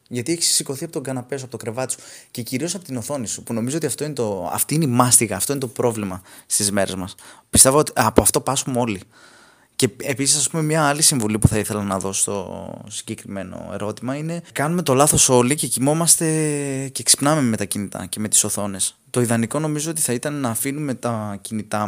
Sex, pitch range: male, 110-145 Hz